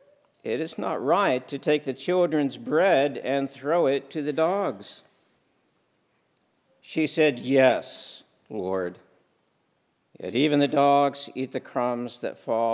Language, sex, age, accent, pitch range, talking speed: English, male, 60-79, American, 120-150 Hz, 130 wpm